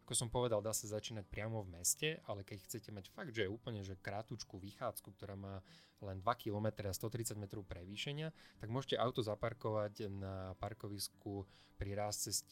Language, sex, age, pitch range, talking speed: Slovak, male, 20-39, 95-115 Hz, 175 wpm